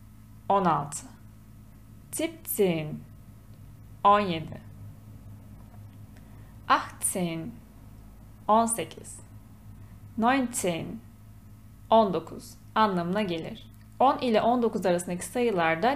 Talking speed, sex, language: 55 wpm, female, Turkish